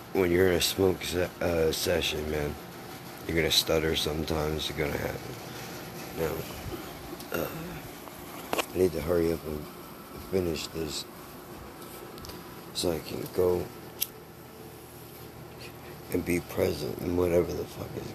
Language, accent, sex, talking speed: English, American, male, 125 wpm